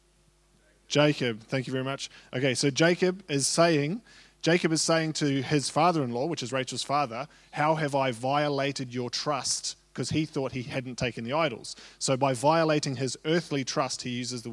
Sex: male